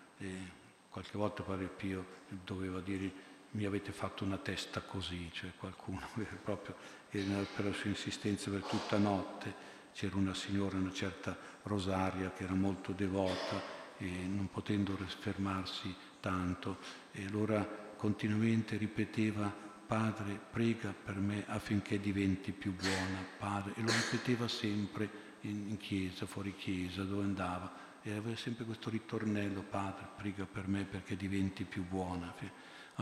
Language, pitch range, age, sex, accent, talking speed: Italian, 95-110 Hz, 60-79, male, native, 140 wpm